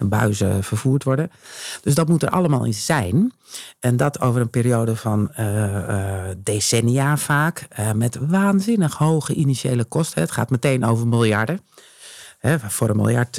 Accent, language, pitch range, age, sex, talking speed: Dutch, Dutch, 110-145 Hz, 50-69, male, 150 wpm